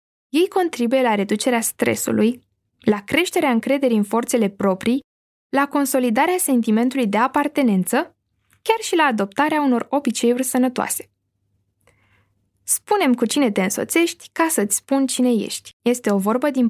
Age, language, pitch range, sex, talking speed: 10-29, Romanian, 215-290 Hz, female, 135 wpm